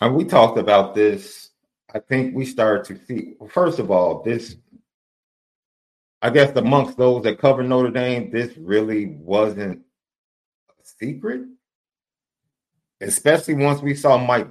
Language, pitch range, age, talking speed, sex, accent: English, 100-125 Hz, 30-49, 135 wpm, male, American